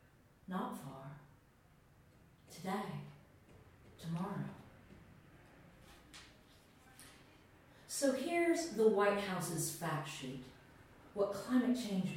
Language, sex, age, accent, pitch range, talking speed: English, female, 40-59, American, 140-190 Hz, 70 wpm